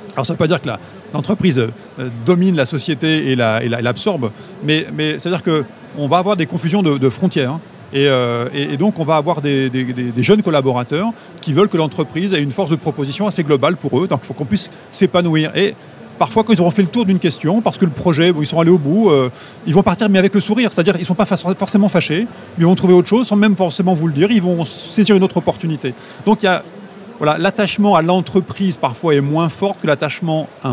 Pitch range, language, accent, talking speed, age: 150-195 Hz, French, French, 250 wpm, 30-49